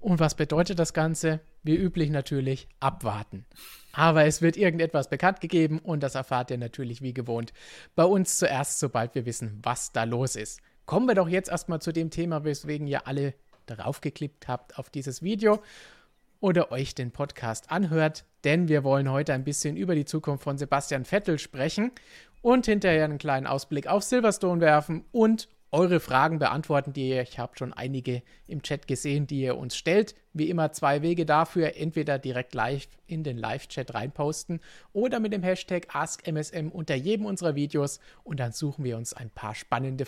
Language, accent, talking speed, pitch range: German, German, 180 wpm, 130-170 Hz